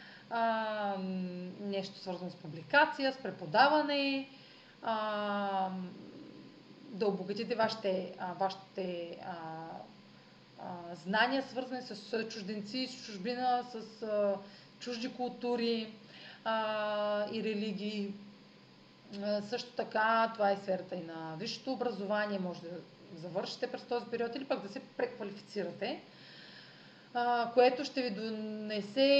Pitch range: 185-235 Hz